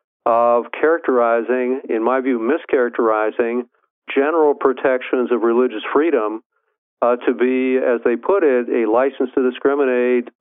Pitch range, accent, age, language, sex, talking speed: 120-130 Hz, American, 50-69, English, male, 125 wpm